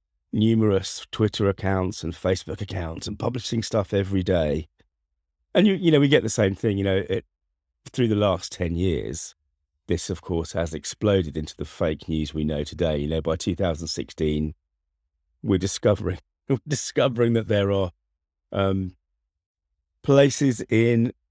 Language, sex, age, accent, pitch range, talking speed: English, male, 40-59, British, 75-105 Hz, 150 wpm